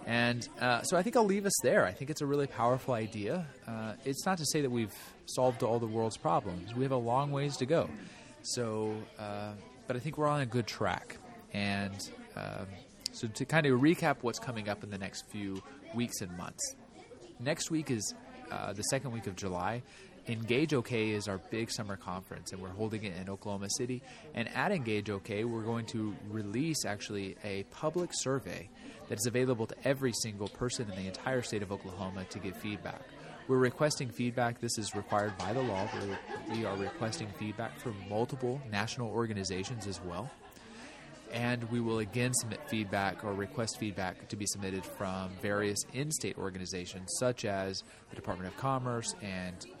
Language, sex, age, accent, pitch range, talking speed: English, male, 20-39, American, 100-125 Hz, 185 wpm